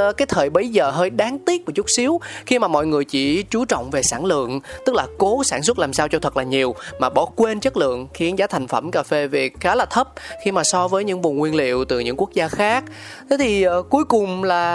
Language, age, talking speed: Vietnamese, 20-39, 265 wpm